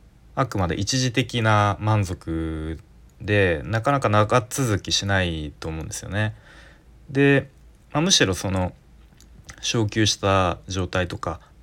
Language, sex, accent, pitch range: Japanese, male, native, 90-115 Hz